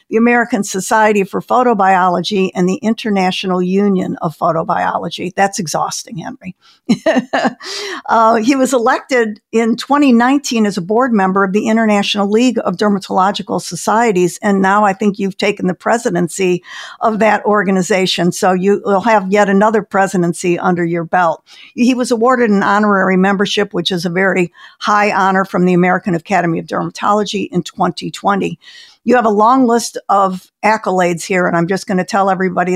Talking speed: 160 wpm